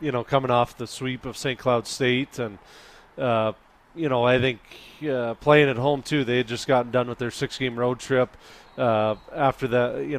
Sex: male